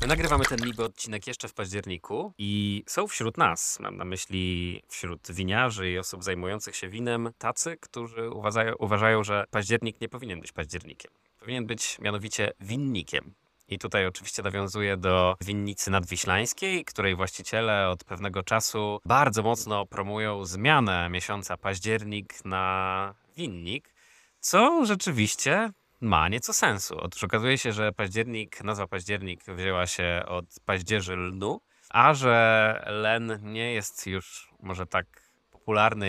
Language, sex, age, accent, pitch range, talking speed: Polish, male, 20-39, native, 95-110 Hz, 135 wpm